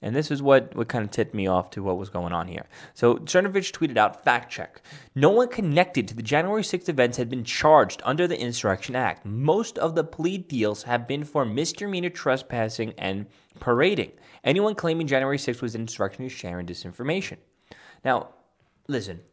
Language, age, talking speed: English, 20-39, 190 wpm